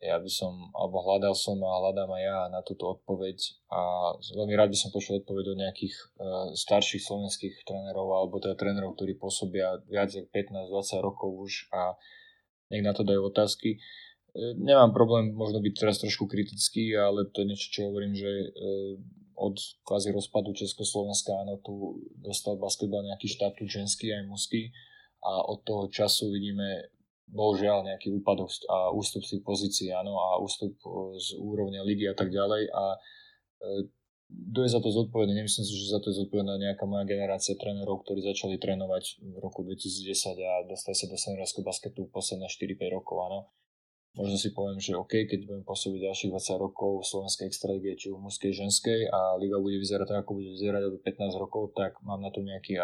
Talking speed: 180 wpm